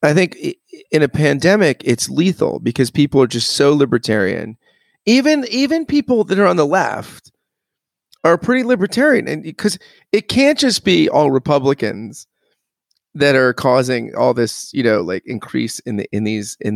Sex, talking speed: male, 165 wpm